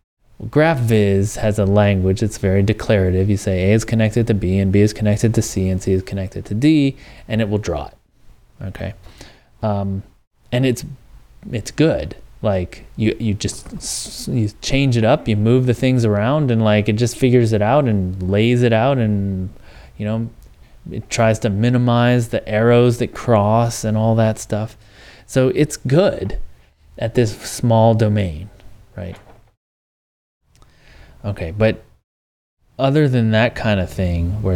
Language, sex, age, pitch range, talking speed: English, male, 20-39, 95-120 Hz, 160 wpm